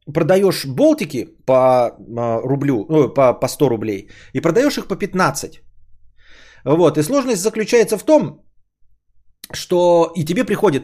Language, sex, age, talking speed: Bulgarian, male, 30-49, 135 wpm